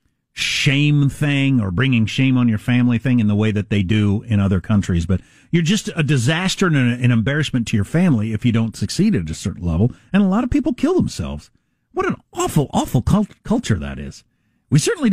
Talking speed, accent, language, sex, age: 210 wpm, American, English, male, 50-69